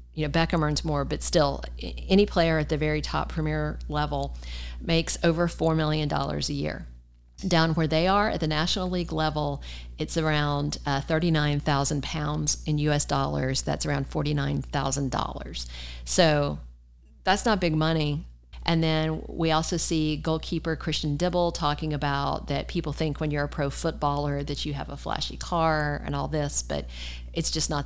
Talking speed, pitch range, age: 165 wpm, 140-165 Hz, 40-59